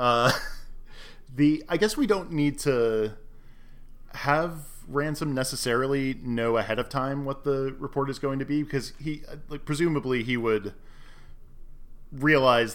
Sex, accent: male, American